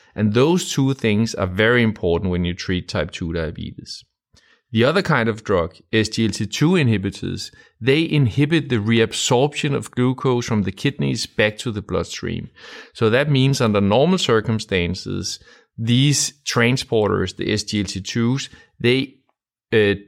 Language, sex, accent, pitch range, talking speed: English, male, Danish, 100-130 Hz, 135 wpm